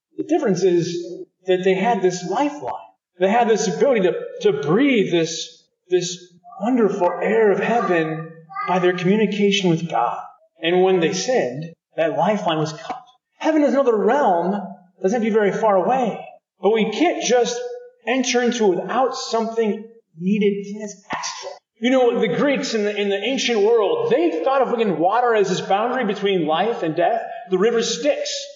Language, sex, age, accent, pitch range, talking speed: English, male, 30-49, American, 180-250 Hz, 175 wpm